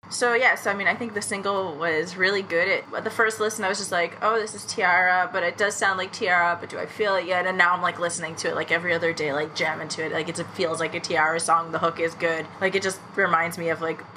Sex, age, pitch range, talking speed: female, 20-39, 170-230 Hz, 295 wpm